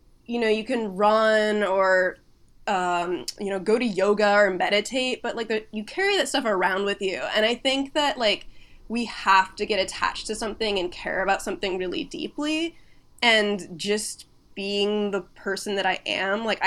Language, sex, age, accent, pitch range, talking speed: English, female, 20-39, American, 195-265 Hz, 180 wpm